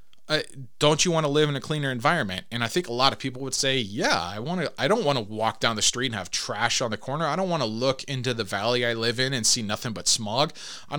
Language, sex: English, male